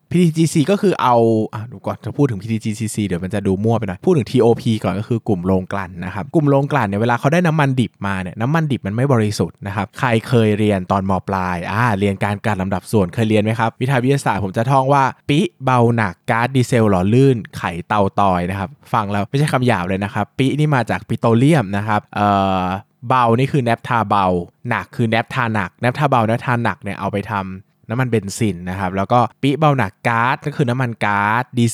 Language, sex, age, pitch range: Thai, male, 20-39, 100-130 Hz